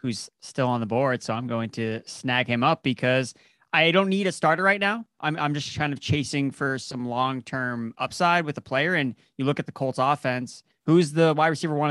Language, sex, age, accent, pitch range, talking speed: English, male, 20-39, American, 125-160 Hz, 225 wpm